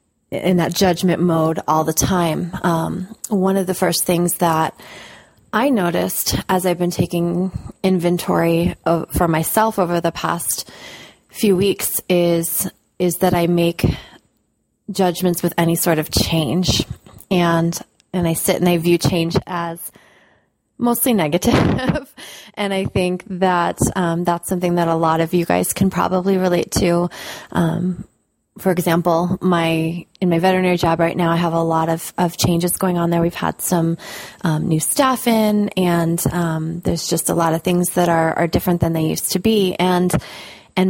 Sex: female